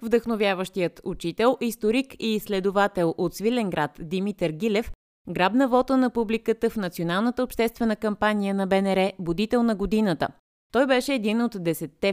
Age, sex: 20-39, female